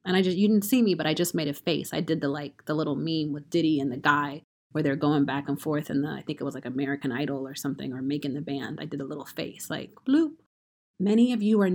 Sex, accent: female, American